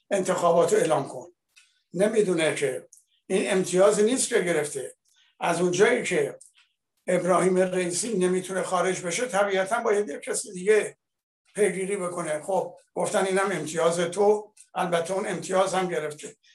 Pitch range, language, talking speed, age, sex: 160-200 Hz, Persian, 135 wpm, 60-79, male